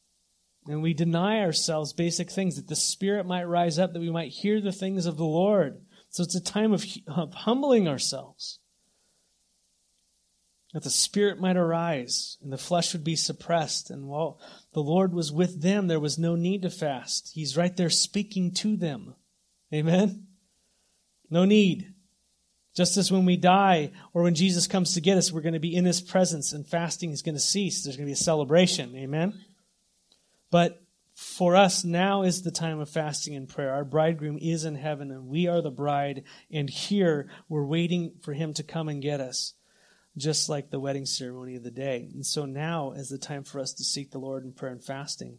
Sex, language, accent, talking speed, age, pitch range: male, English, American, 200 wpm, 30-49, 150-185 Hz